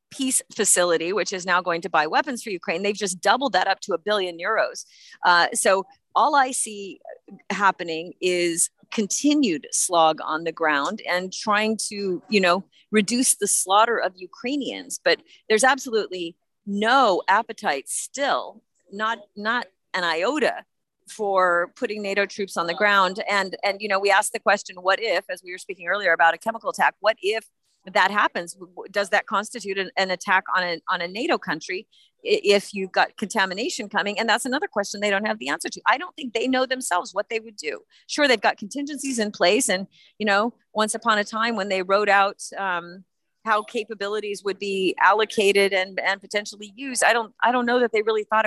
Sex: female